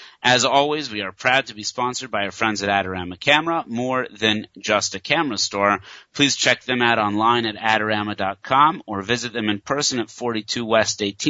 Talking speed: 185 wpm